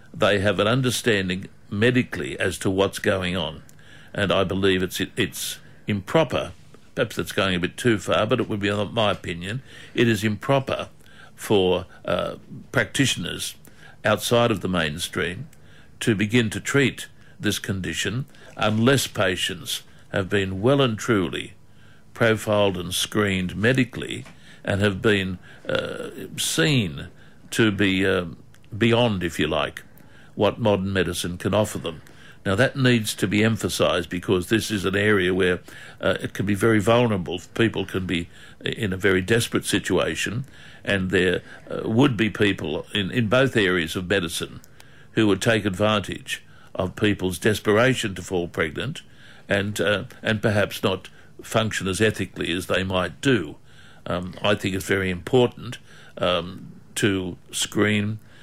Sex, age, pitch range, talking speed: male, 60-79, 95-115 Hz, 145 wpm